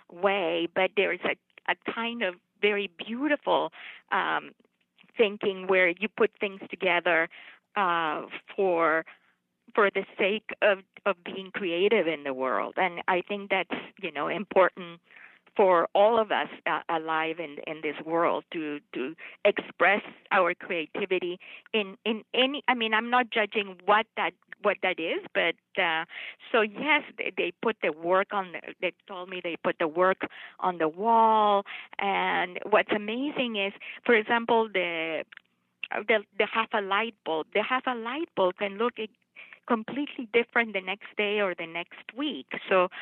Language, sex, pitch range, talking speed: English, female, 175-225 Hz, 160 wpm